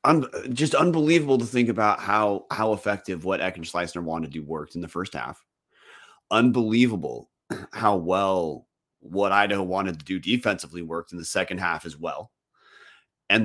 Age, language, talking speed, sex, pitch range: 30-49, English, 160 wpm, male, 95-125 Hz